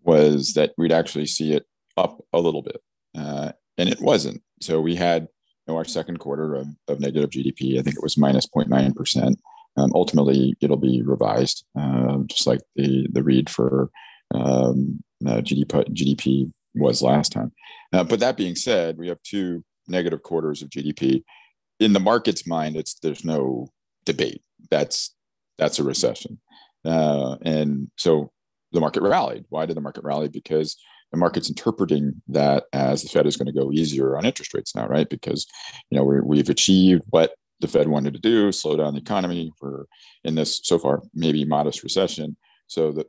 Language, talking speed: English, 180 wpm